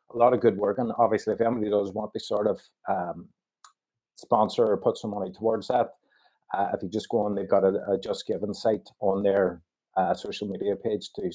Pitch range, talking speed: 100-120 Hz, 220 wpm